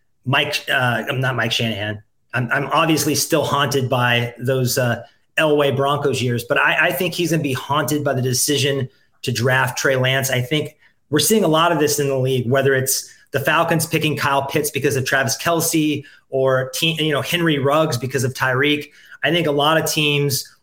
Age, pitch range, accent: 30-49, 130-160 Hz, American